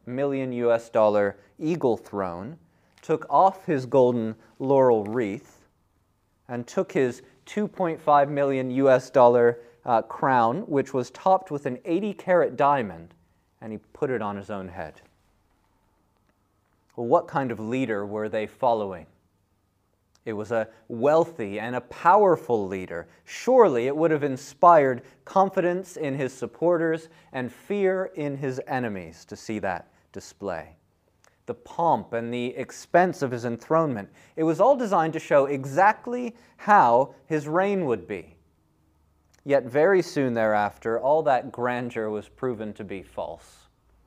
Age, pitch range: 30-49, 105-150 Hz